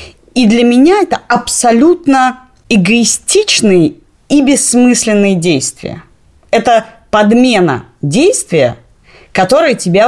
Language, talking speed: Russian, 85 wpm